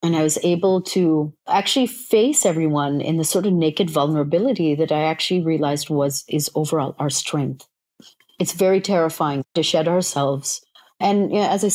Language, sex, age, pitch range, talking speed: English, female, 40-59, 150-185 Hz, 165 wpm